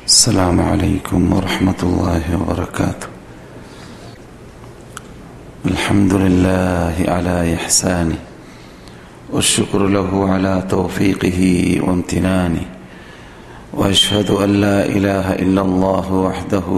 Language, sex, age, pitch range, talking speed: Malayalam, male, 40-59, 95-110 Hz, 75 wpm